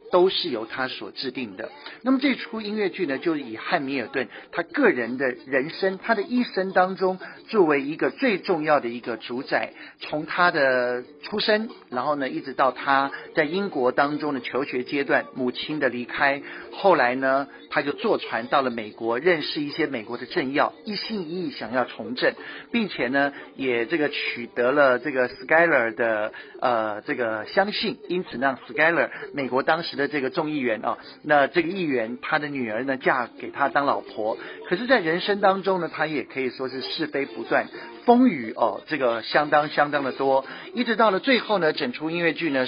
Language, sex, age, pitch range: Chinese, male, 50-69, 125-180 Hz